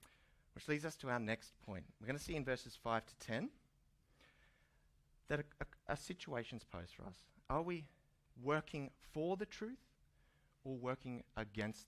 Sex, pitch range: male, 95-140 Hz